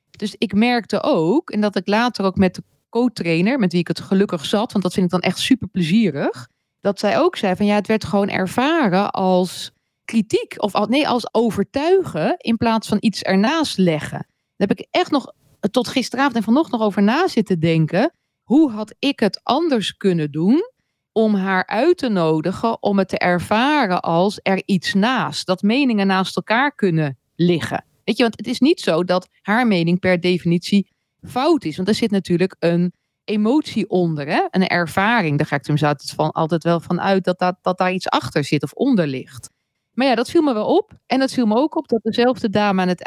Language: Dutch